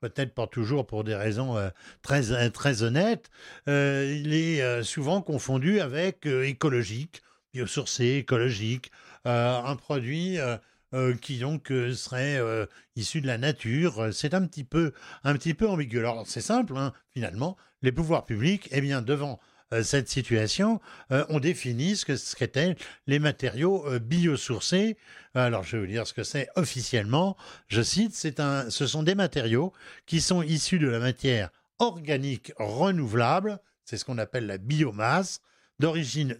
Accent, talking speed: French, 155 wpm